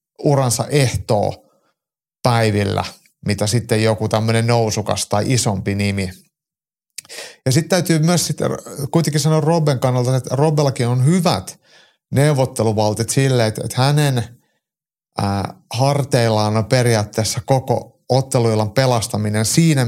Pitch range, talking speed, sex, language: 110-140 Hz, 110 wpm, male, Finnish